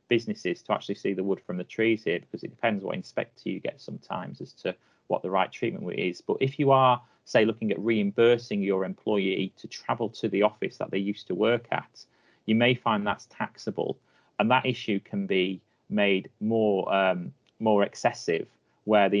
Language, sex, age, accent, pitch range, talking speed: English, male, 30-49, British, 95-115 Hz, 195 wpm